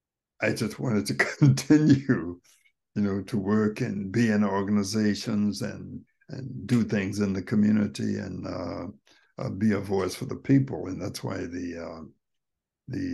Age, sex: 60-79, male